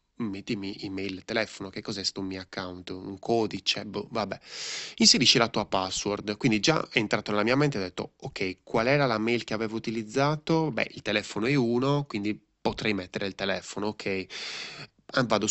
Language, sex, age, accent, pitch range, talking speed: Italian, male, 20-39, native, 100-155 Hz, 180 wpm